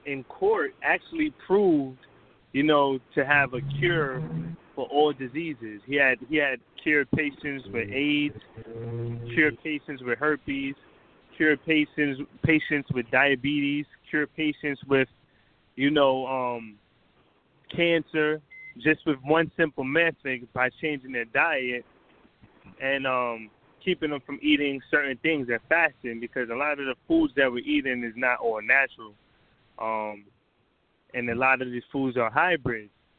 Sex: male